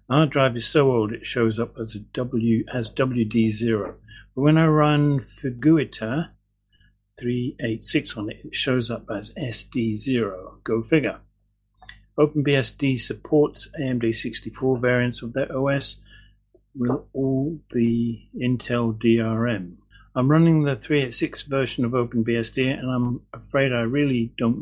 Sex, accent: male, British